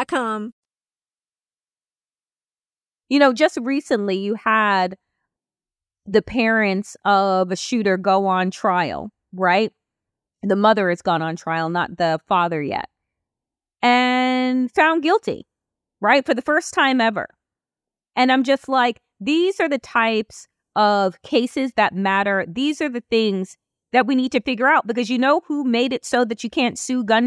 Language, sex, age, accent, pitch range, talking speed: English, female, 30-49, American, 190-260 Hz, 150 wpm